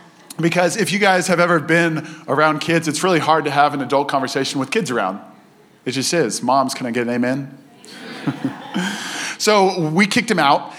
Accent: American